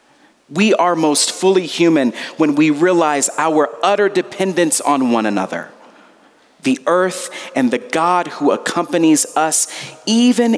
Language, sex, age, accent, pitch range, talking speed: English, male, 40-59, American, 140-195 Hz, 130 wpm